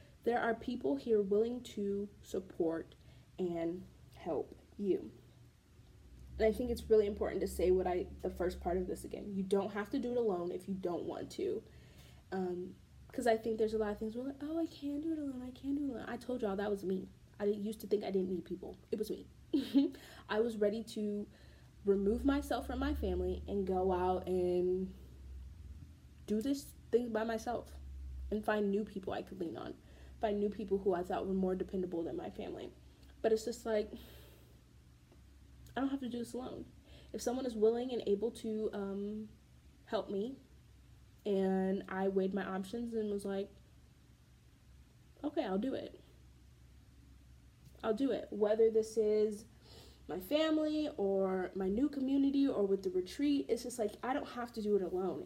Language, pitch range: English, 185-235 Hz